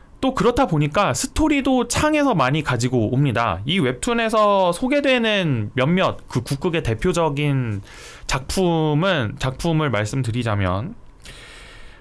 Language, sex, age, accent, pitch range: Korean, male, 20-39, native, 110-175 Hz